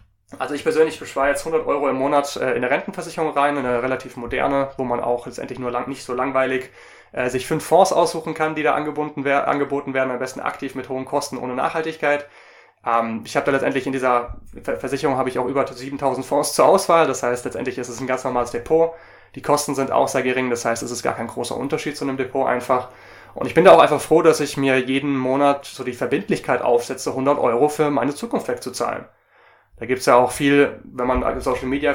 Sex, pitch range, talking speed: male, 120-145 Hz, 220 wpm